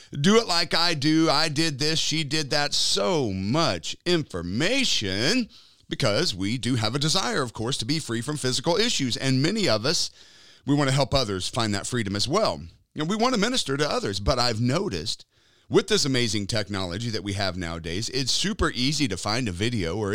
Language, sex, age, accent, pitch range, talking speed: English, male, 40-59, American, 100-155 Hz, 205 wpm